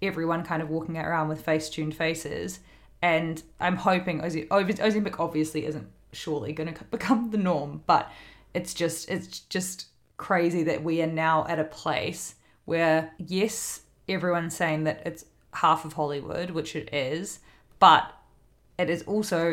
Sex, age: female, 20-39